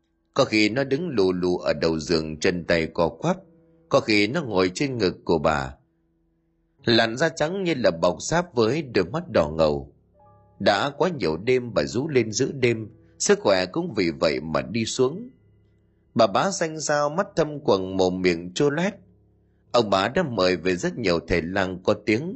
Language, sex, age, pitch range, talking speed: Vietnamese, male, 30-49, 85-140 Hz, 190 wpm